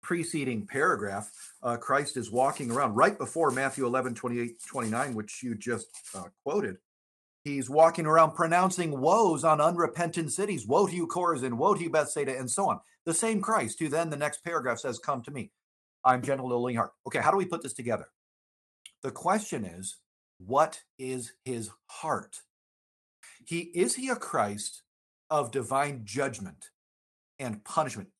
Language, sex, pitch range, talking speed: English, male, 120-165 Hz, 165 wpm